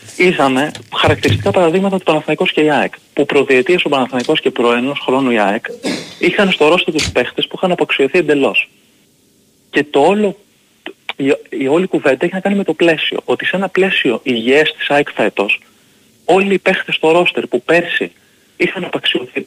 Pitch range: 135-200 Hz